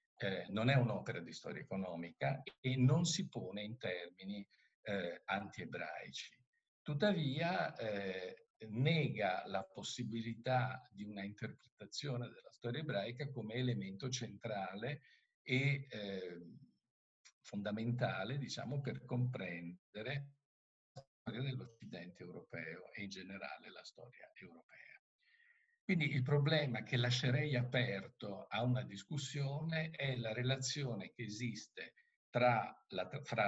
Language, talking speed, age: Italian, 110 wpm, 50-69